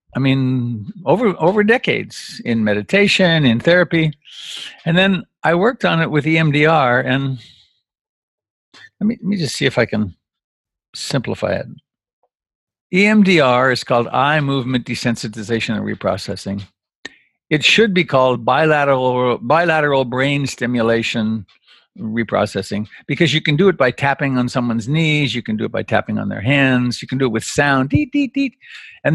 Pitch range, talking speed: 120-170 Hz, 160 wpm